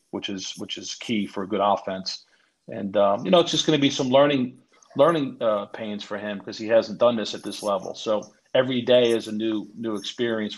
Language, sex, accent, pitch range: English, male, American, 100-115 Hz